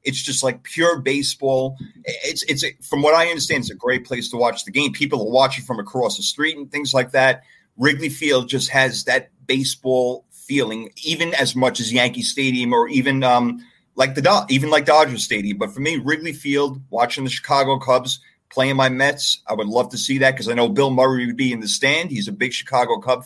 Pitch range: 130-200 Hz